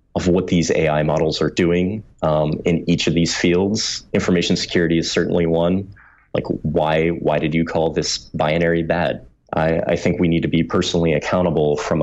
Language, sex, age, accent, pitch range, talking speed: English, male, 30-49, American, 80-95 Hz, 185 wpm